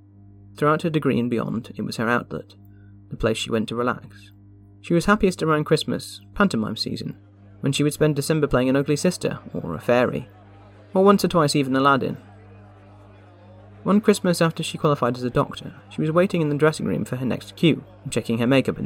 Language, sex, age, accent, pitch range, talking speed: English, male, 30-49, British, 100-155 Hz, 200 wpm